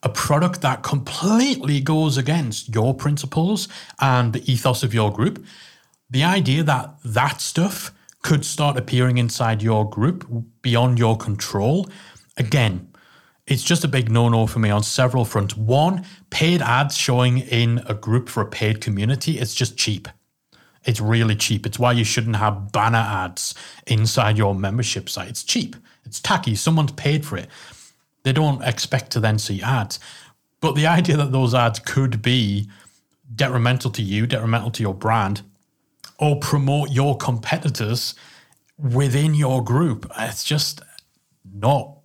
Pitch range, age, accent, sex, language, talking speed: 115-145 Hz, 30-49, British, male, English, 155 wpm